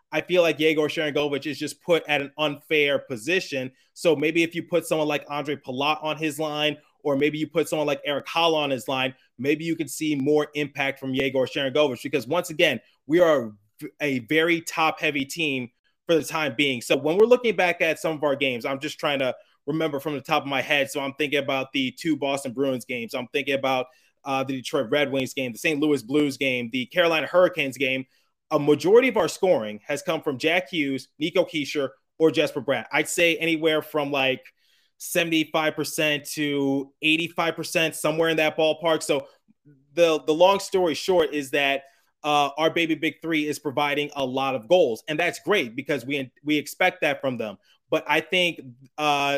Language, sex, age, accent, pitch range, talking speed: English, male, 20-39, American, 140-160 Hz, 200 wpm